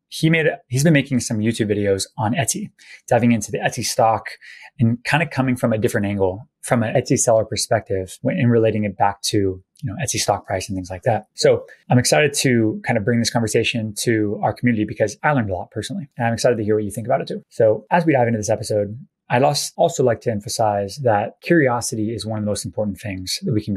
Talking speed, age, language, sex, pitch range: 245 wpm, 20-39, English, male, 105-125 Hz